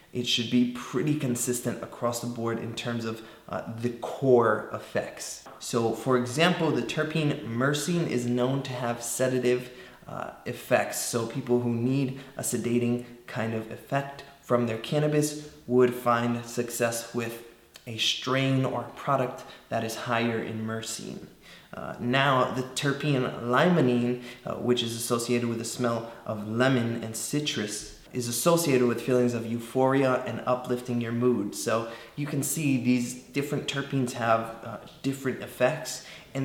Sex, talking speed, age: male, 150 wpm, 20-39